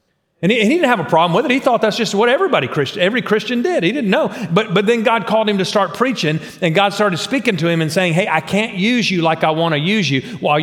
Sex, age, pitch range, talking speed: male, 40-59, 150-205 Hz, 295 wpm